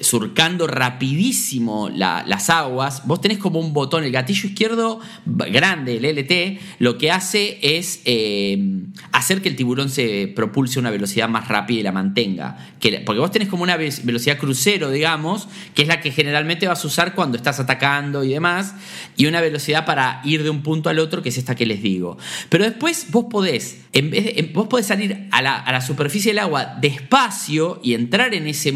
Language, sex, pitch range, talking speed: Spanish, male, 135-200 Hz, 200 wpm